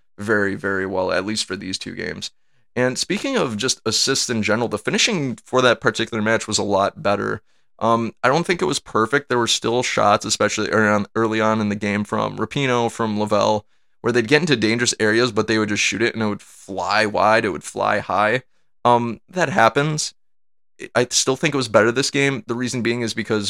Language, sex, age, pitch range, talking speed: English, male, 20-39, 105-120 Hz, 220 wpm